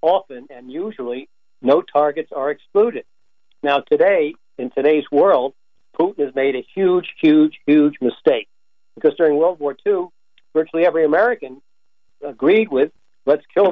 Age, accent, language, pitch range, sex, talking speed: 60-79, American, English, 125-160 Hz, male, 140 wpm